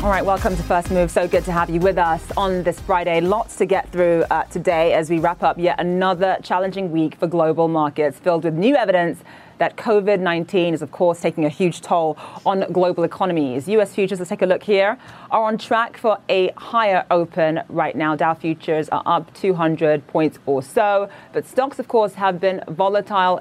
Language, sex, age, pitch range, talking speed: English, female, 30-49, 160-195 Hz, 210 wpm